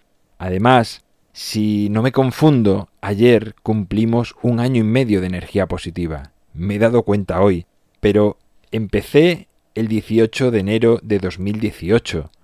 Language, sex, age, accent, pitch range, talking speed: Spanish, male, 30-49, Spanish, 95-115 Hz, 130 wpm